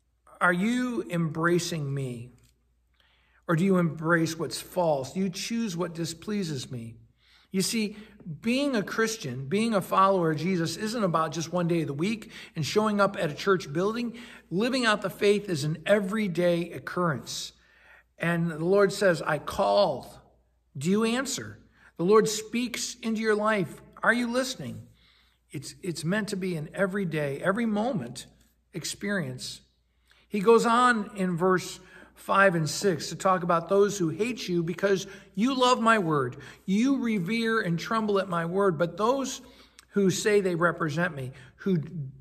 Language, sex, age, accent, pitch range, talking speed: English, male, 60-79, American, 155-205 Hz, 160 wpm